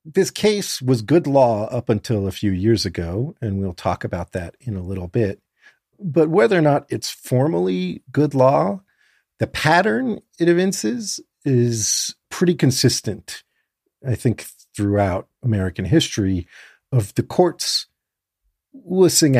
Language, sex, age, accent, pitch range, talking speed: English, male, 40-59, American, 100-140 Hz, 135 wpm